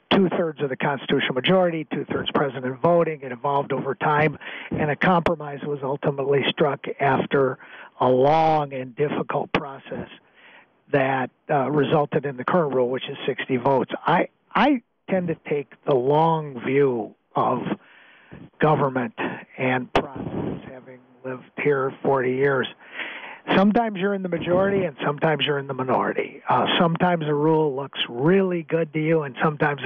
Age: 50-69